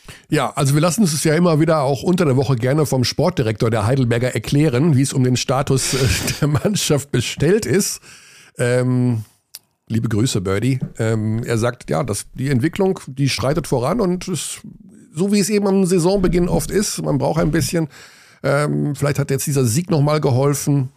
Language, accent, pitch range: German, German, 120-165 Hz